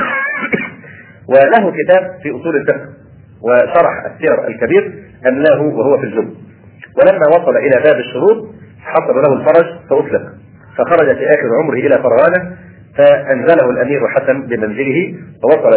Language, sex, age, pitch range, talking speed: Arabic, male, 40-59, 115-160 Hz, 120 wpm